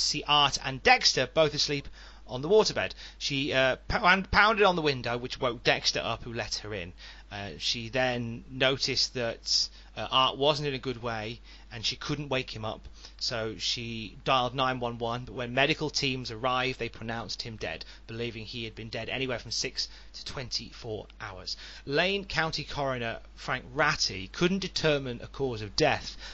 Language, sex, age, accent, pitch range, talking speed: English, male, 30-49, British, 115-150 Hz, 180 wpm